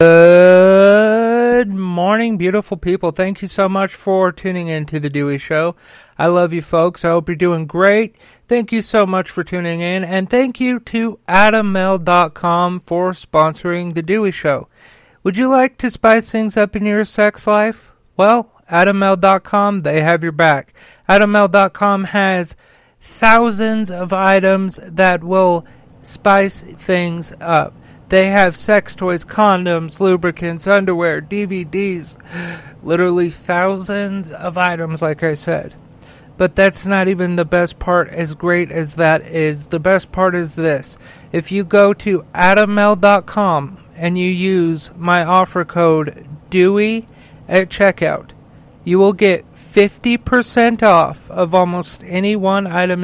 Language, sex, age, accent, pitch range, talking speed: English, male, 40-59, American, 170-200 Hz, 140 wpm